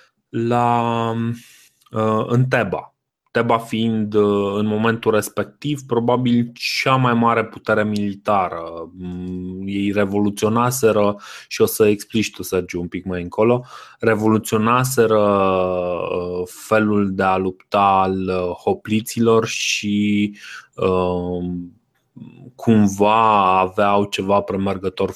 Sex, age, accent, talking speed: male, 20-39, native, 90 wpm